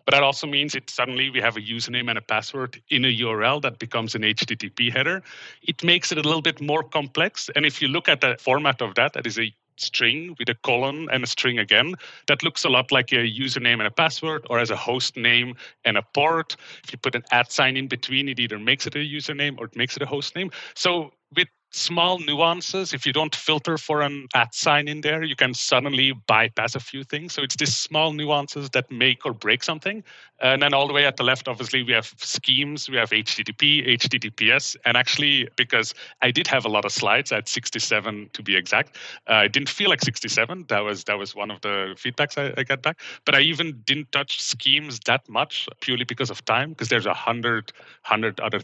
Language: English